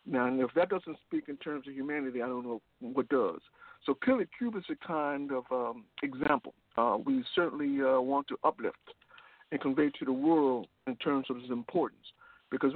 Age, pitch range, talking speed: 60-79, 135-195 Hz, 195 wpm